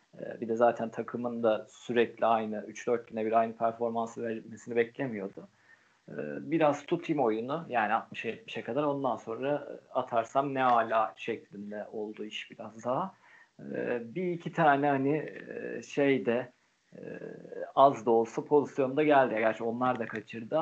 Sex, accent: male, native